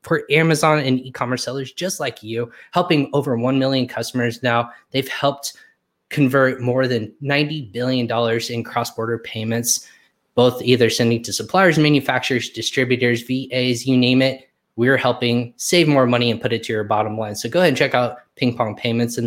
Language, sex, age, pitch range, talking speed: English, male, 20-39, 115-135 Hz, 180 wpm